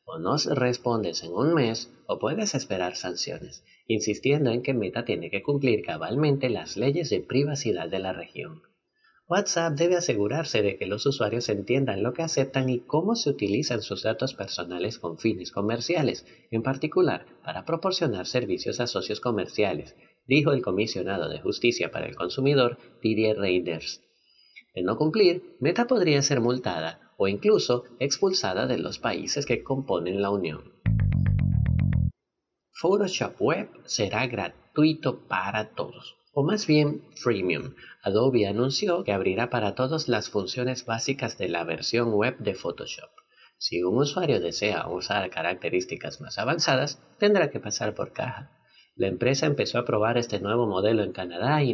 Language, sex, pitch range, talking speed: Spanish, male, 105-140 Hz, 150 wpm